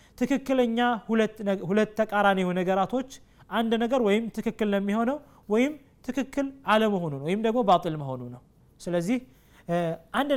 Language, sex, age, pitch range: Amharic, male, 30-49, 185-240 Hz